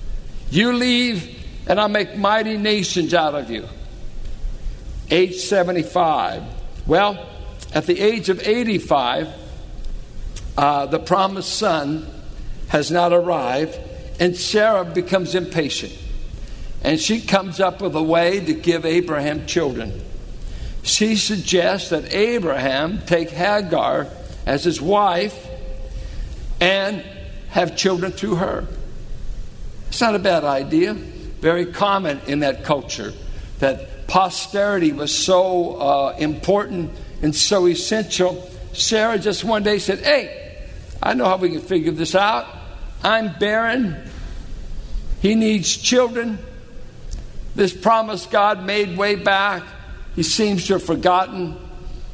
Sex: male